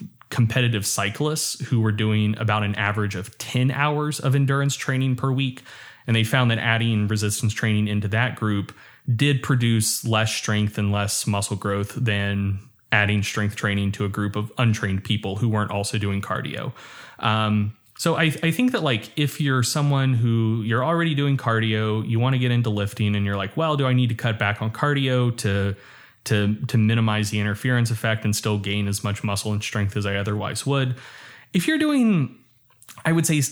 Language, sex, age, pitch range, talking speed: English, male, 20-39, 105-130 Hz, 190 wpm